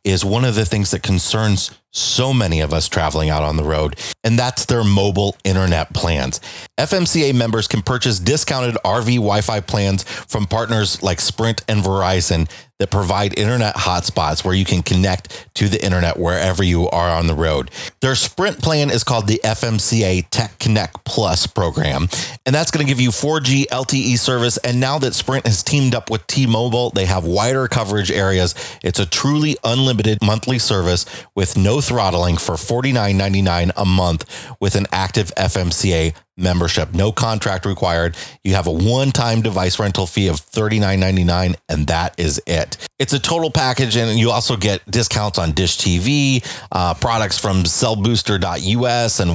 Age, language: 30-49, English